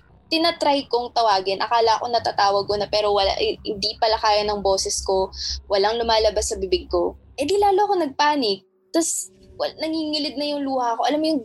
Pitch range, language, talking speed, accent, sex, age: 210-275 Hz, Filipino, 195 wpm, native, female, 20-39